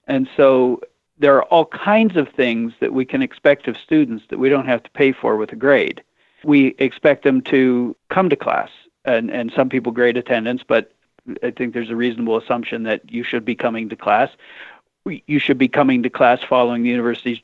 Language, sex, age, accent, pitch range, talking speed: English, male, 50-69, American, 120-140 Hz, 205 wpm